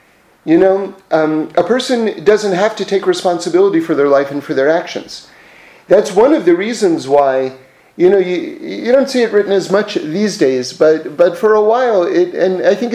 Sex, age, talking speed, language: male, 40-59, 200 wpm, English